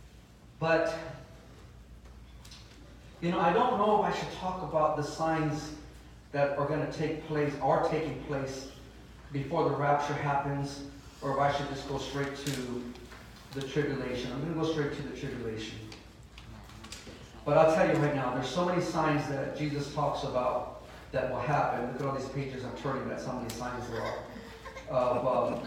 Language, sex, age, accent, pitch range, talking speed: English, male, 40-59, American, 125-160 Hz, 175 wpm